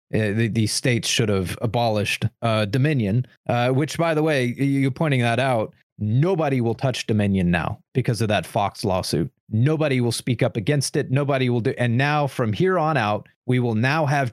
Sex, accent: male, American